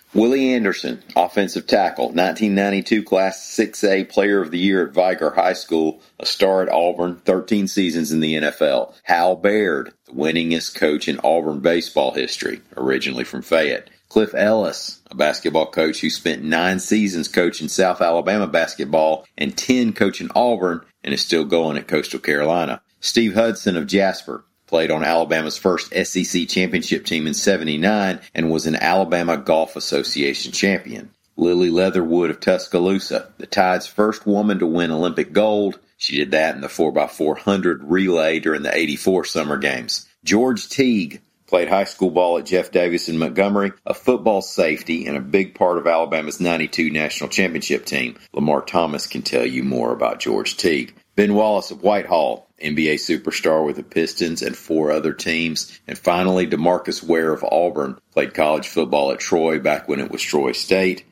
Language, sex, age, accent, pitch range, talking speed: English, male, 40-59, American, 80-100 Hz, 165 wpm